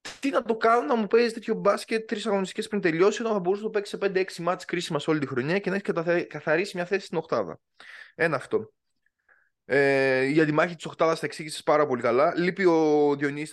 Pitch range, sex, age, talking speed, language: 135-190 Hz, male, 20-39, 225 wpm, Greek